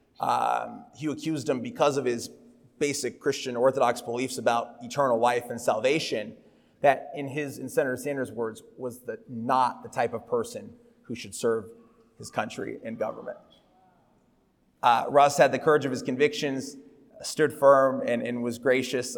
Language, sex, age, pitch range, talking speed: English, male, 30-49, 125-160 Hz, 160 wpm